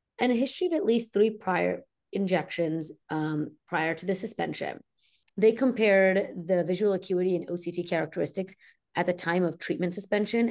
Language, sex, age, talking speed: English, female, 30-49, 155 wpm